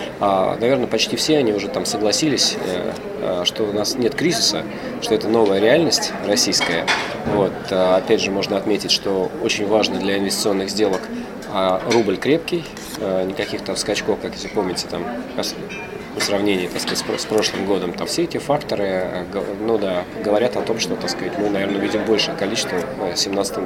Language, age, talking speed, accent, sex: Russian, 20-39, 150 wpm, native, male